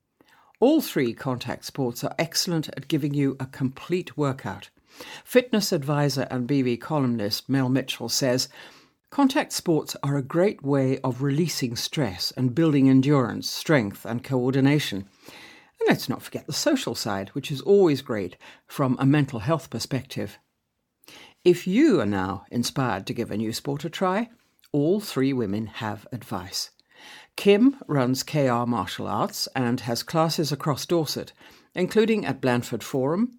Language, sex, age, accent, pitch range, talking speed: English, female, 60-79, British, 120-170 Hz, 145 wpm